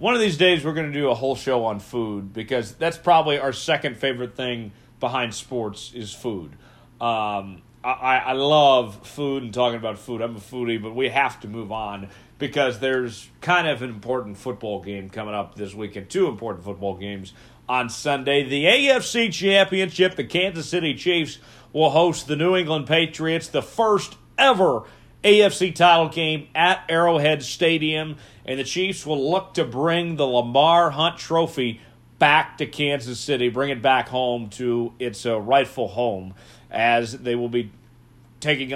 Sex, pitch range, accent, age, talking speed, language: male, 120-165 Hz, American, 40-59, 170 wpm, English